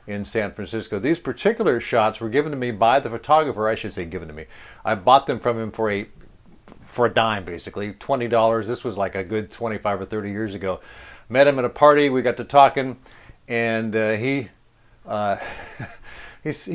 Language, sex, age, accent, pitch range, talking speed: English, male, 50-69, American, 105-135 Hz, 200 wpm